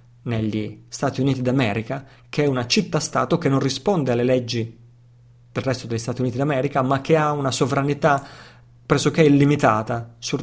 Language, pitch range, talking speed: Italian, 120-145 Hz, 155 wpm